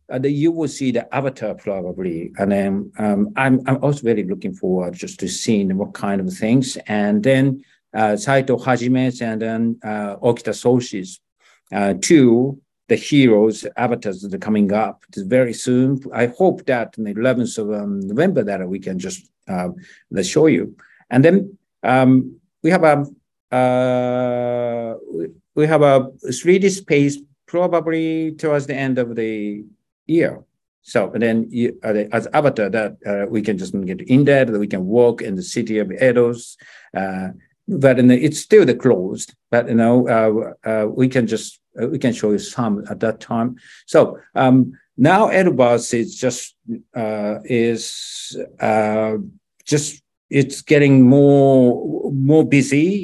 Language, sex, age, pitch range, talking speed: English, male, 60-79, 110-140 Hz, 165 wpm